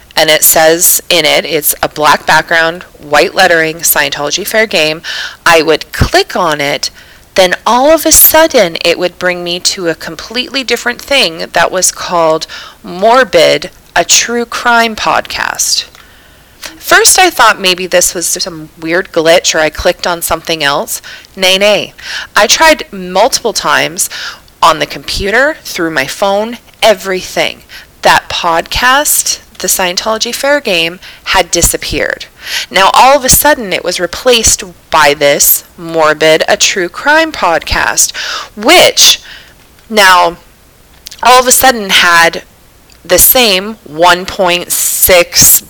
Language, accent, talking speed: English, American, 135 wpm